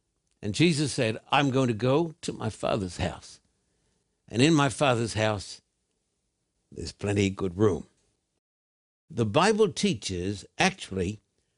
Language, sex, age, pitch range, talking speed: English, male, 60-79, 110-145 Hz, 130 wpm